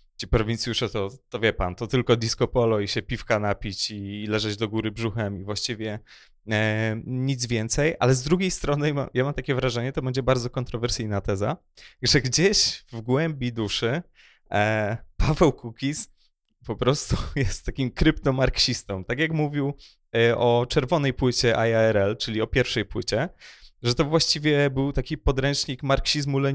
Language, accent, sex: Polish, native, male